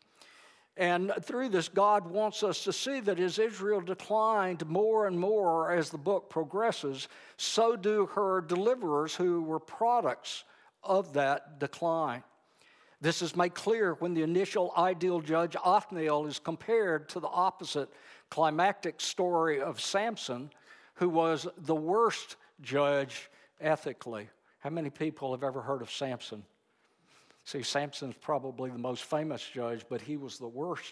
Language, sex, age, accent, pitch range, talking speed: English, male, 60-79, American, 135-185 Hz, 145 wpm